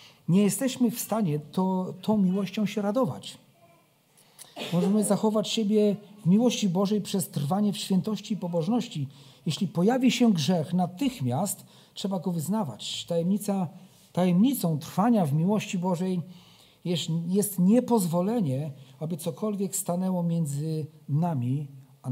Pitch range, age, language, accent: 145-200 Hz, 50-69, Polish, native